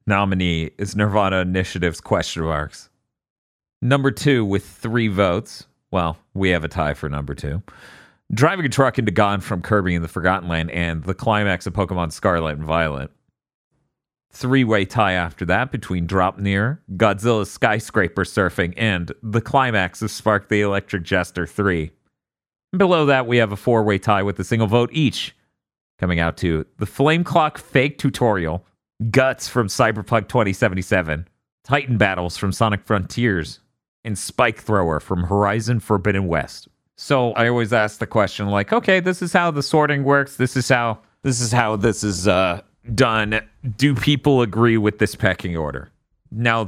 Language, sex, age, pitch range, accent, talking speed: English, male, 40-59, 90-120 Hz, American, 160 wpm